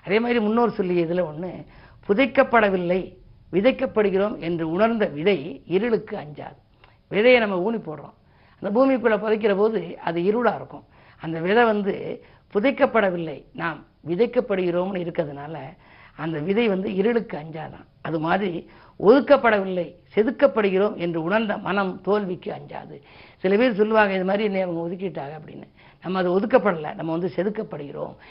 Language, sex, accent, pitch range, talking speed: Tamil, female, native, 170-220 Hz, 125 wpm